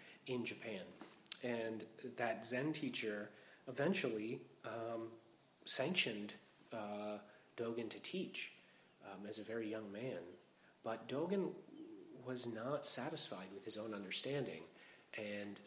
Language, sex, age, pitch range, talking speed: English, male, 30-49, 105-120 Hz, 110 wpm